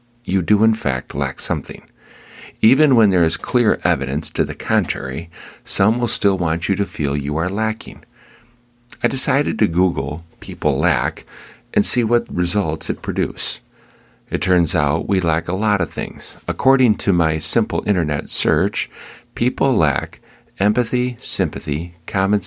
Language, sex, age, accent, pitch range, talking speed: English, male, 50-69, American, 80-105 Hz, 150 wpm